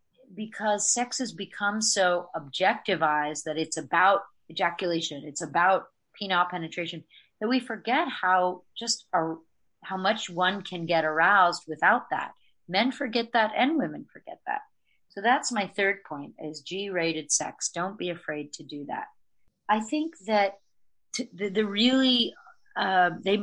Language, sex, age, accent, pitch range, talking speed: English, female, 30-49, American, 165-205 Hz, 145 wpm